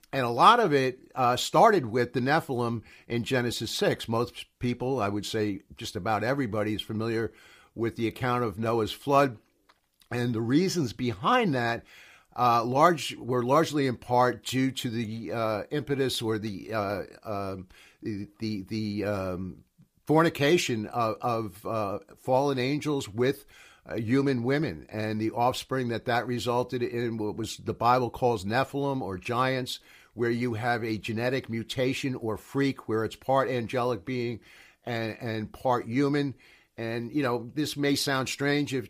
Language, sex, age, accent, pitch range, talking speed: English, male, 60-79, American, 110-135 Hz, 160 wpm